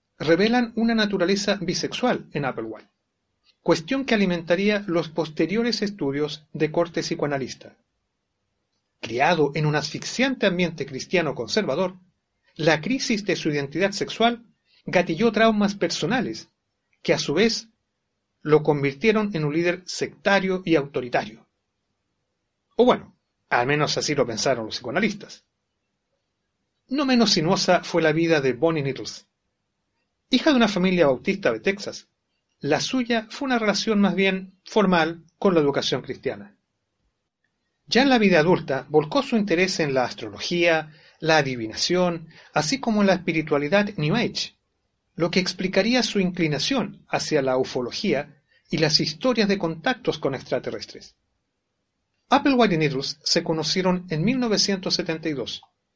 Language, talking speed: Spanish, 130 wpm